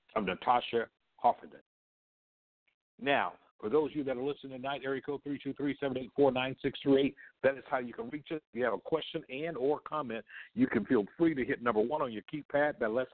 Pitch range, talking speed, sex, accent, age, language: 130-170 Hz, 235 wpm, male, American, 60-79, English